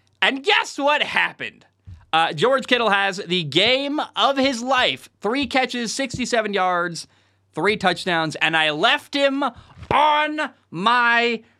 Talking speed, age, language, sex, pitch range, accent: 130 wpm, 20-39, English, male, 140-200 Hz, American